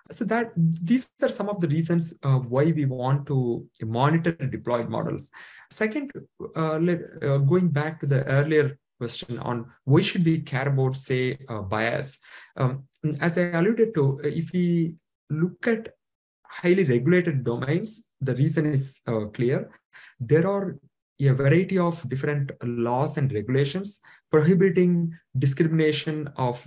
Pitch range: 125-165 Hz